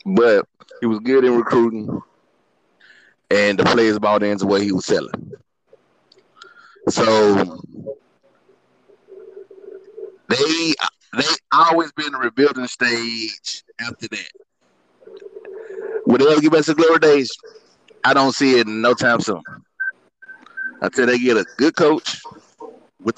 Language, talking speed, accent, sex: English, 115 wpm, American, male